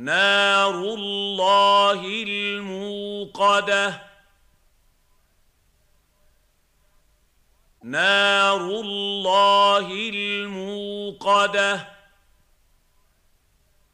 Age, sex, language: 50-69, male, Arabic